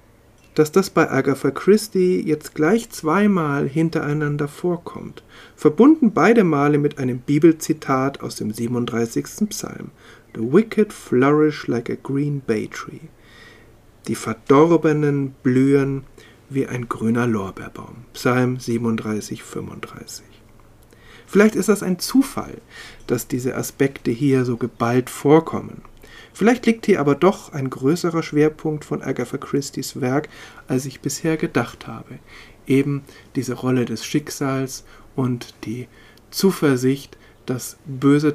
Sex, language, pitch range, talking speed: male, German, 120-155 Hz, 120 wpm